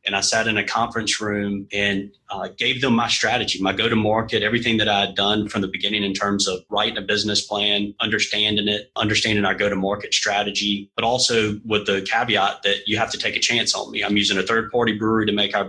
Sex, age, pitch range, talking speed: male, 30-49, 100-110 Hz, 220 wpm